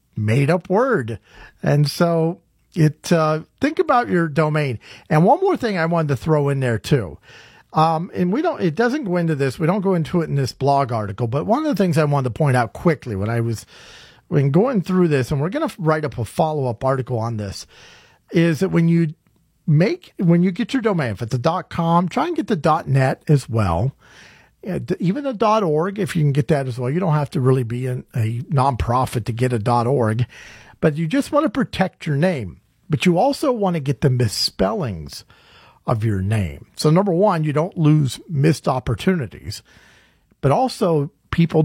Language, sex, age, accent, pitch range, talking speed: English, male, 40-59, American, 125-180 Hz, 210 wpm